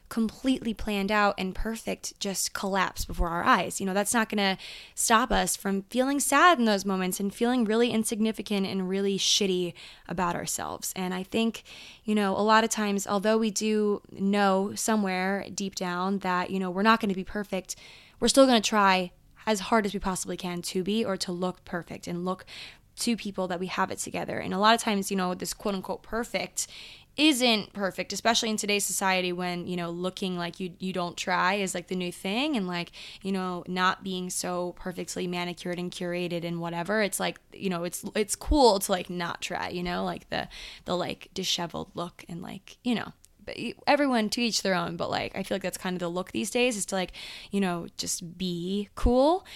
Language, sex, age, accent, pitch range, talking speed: English, female, 20-39, American, 180-220 Hz, 210 wpm